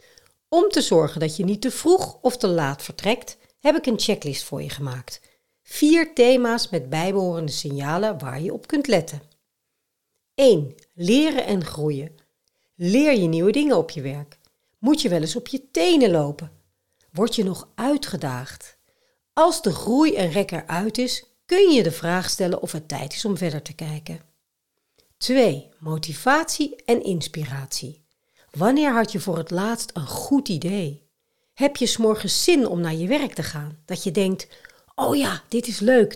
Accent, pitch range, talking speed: Dutch, 160-260 Hz, 170 wpm